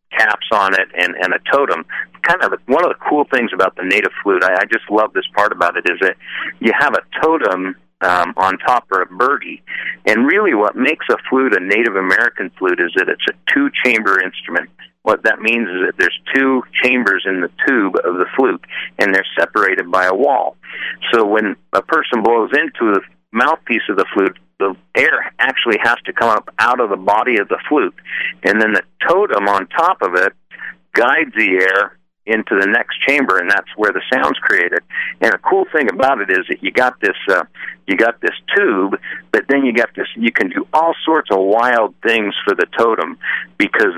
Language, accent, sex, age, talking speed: English, American, male, 50-69, 210 wpm